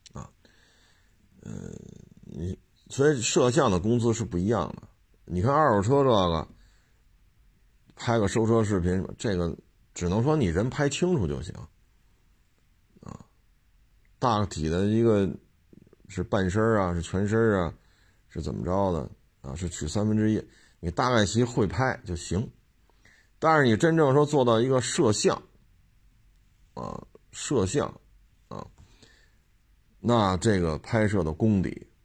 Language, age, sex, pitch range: Chinese, 50-69, male, 90-115 Hz